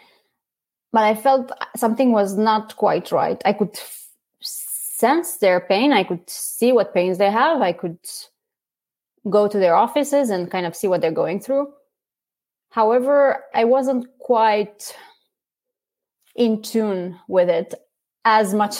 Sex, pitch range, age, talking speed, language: female, 185-240 Hz, 20-39, 140 wpm, English